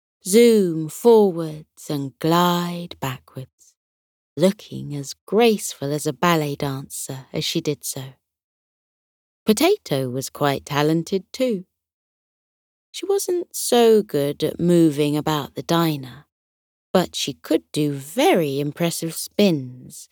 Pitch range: 140-205 Hz